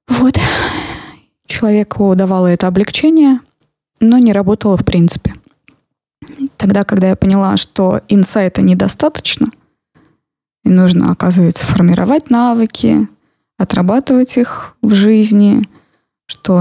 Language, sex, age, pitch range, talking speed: Russian, female, 20-39, 180-225 Hz, 100 wpm